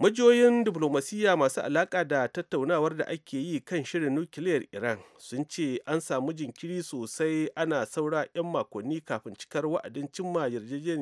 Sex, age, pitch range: male, 30-49, 135-165 Hz